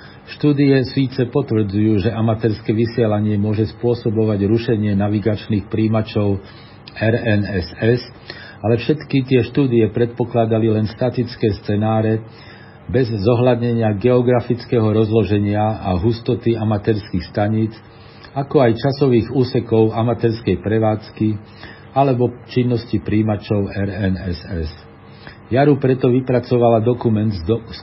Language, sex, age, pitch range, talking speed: Slovak, male, 50-69, 105-120 Hz, 95 wpm